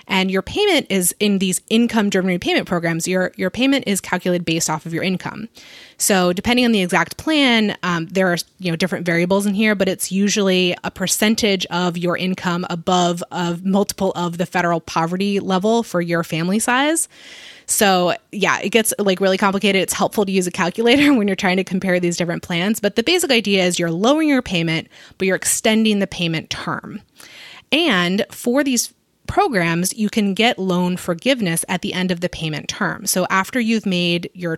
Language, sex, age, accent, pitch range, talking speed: English, female, 20-39, American, 175-205 Hz, 195 wpm